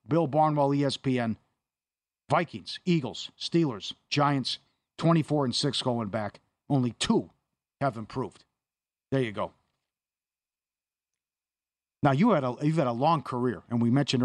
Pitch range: 120-150 Hz